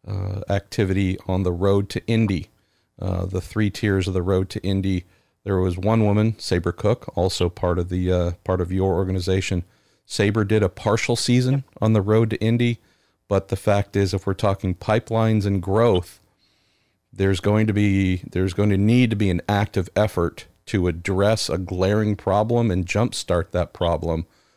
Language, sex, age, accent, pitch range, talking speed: English, male, 40-59, American, 95-110 Hz, 180 wpm